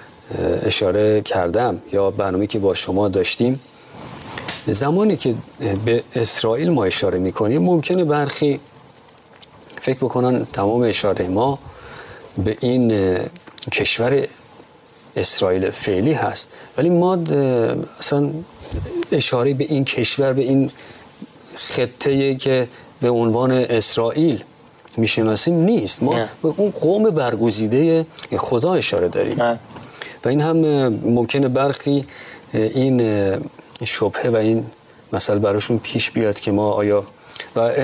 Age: 50-69